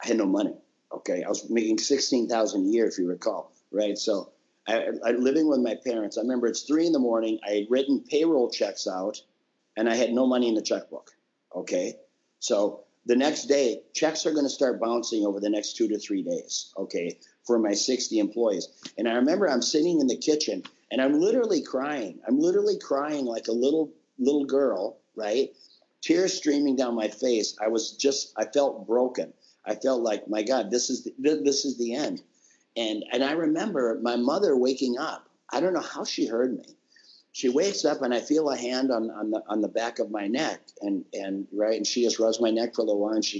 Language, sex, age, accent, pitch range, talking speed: English, male, 50-69, American, 115-150 Hz, 215 wpm